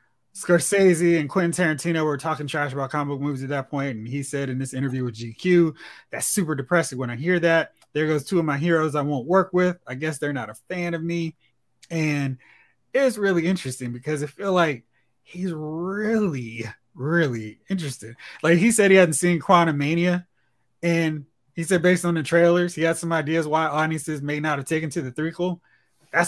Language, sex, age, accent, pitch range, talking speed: English, male, 20-39, American, 135-175 Hz, 200 wpm